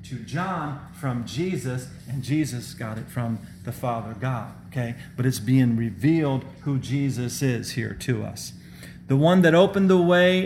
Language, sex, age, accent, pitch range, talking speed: English, male, 40-59, American, 130-175 Hz, 160 wpm